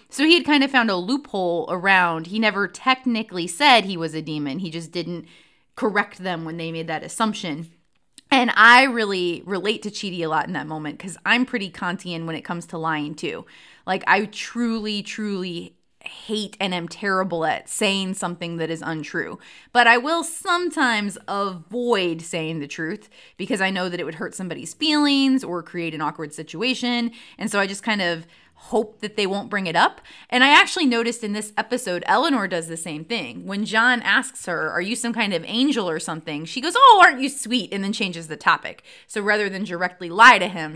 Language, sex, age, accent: English, female, 20-39, American